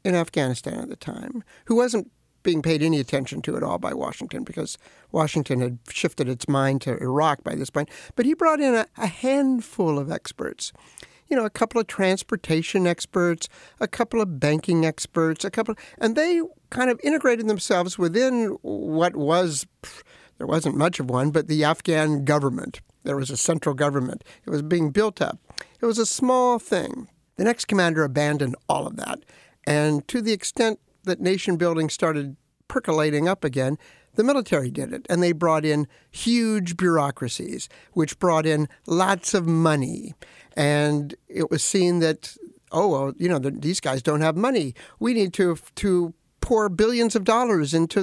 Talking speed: 175 wpm